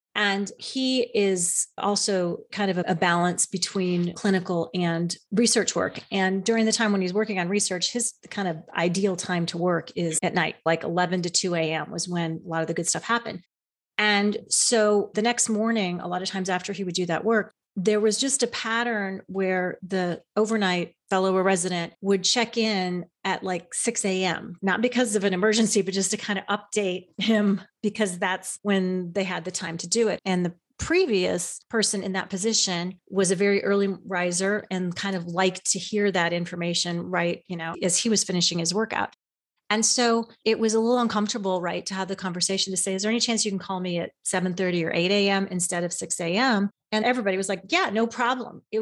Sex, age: female, 30-49